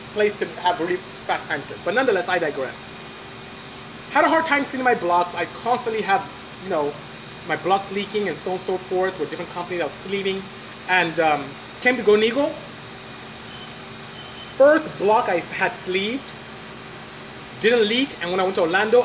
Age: 30-49